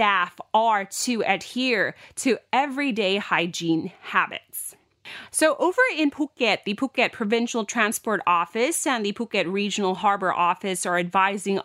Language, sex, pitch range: Thai, female, 190-250 Hz